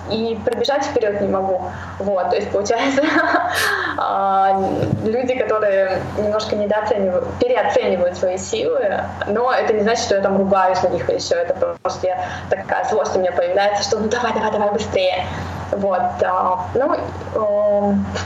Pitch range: 195-265 Hz